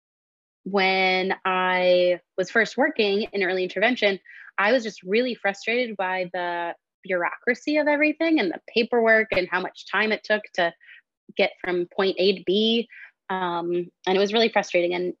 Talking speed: 160 wpm